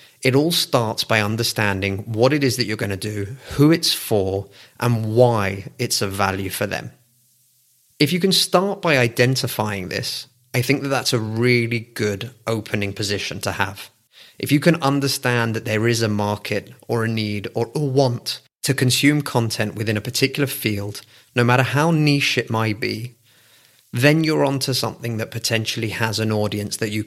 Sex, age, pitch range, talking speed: male, 30-49, 110-130 Hz, 180 wpm